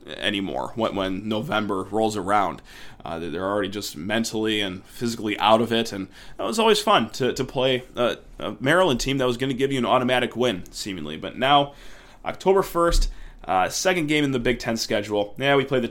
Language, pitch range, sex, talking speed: English, 110-150 Hz, male, 205 wpm